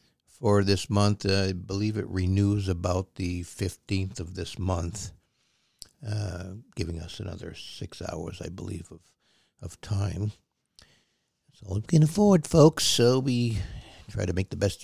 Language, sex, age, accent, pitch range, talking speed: English, male, 60-79, American, 95-115 Hz, 155 wpm